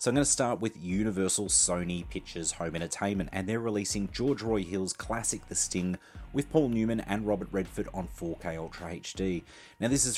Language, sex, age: English, male, 30-49